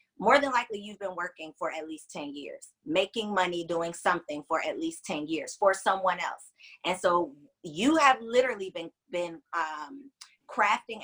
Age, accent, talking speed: 20-39, American, 175 wpm